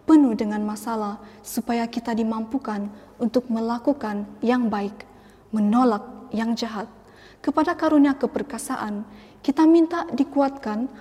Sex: female